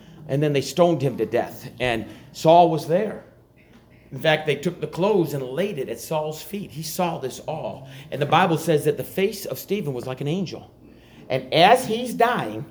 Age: 50-69